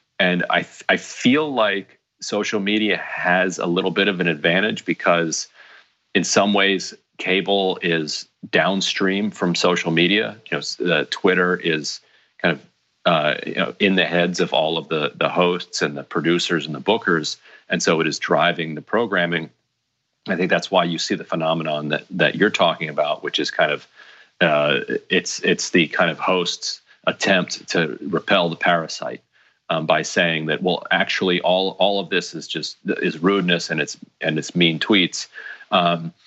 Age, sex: 40-59, male